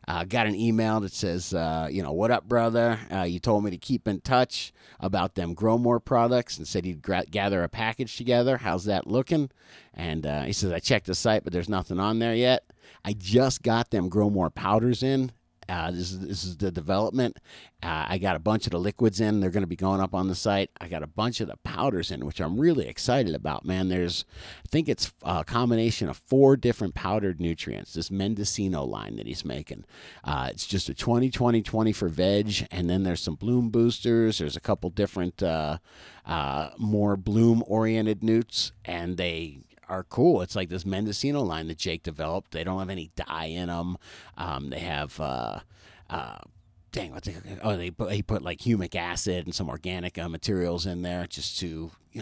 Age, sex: 50-69, male